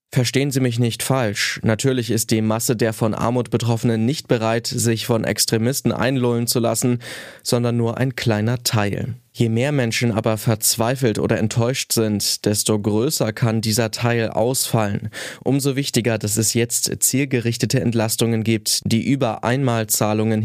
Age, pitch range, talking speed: 20-39, 110-130 Hz, 150 wpm